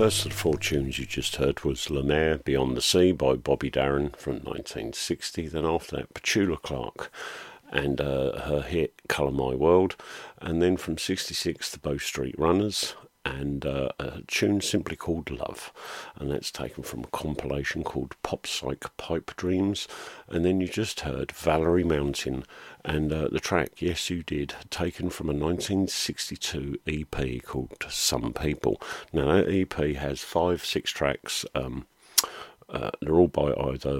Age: 50-69